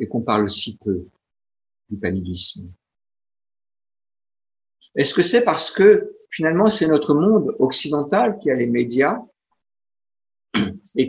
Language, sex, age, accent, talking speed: French, male, 50-69, French, 120 wpm